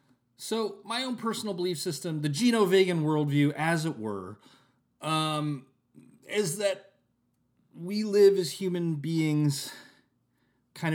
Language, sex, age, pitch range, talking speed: English, male, 30-49, 105-140 Hz, 115 wpm